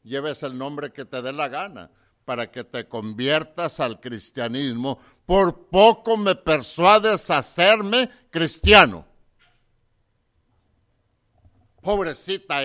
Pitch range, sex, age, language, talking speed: 110-155 Hz, male, 60-79, English, 105 wpm